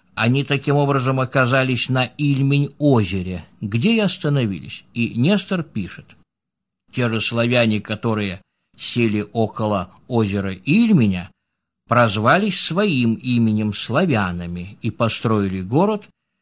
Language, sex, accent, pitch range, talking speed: Russian, male, native, 115-165 Hz, 100 wpm